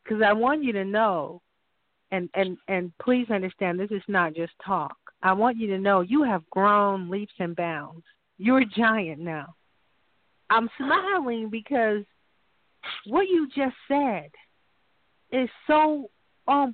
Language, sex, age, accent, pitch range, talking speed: English, female, 50-69, American, 190-255 Hz, 145 wpm